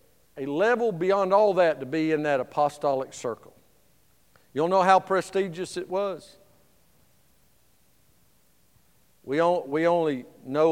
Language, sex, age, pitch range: English, male, 50-69, 140-235 Hz